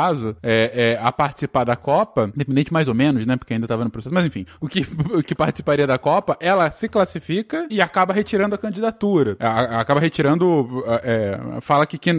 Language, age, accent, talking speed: Portuguese, 20-39, Brazilian, 205 wpm